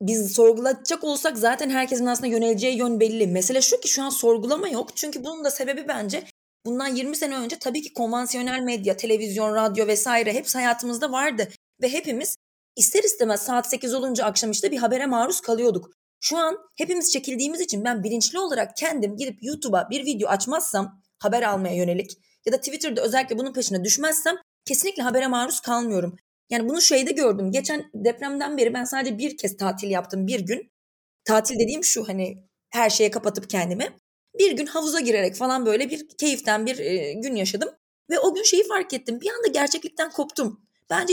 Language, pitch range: Turkish, 220-295 Hz